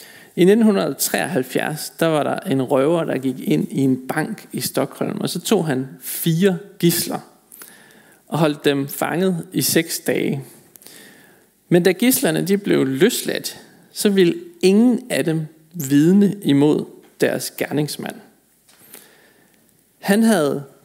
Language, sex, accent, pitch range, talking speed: Danish, male, native, 145-195 Hz, 130 wpm